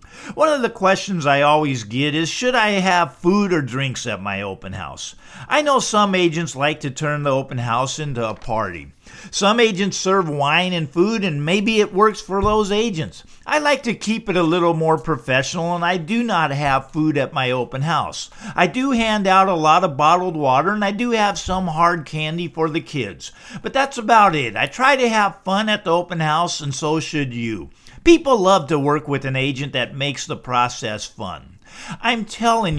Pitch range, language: 150-210 Hz, English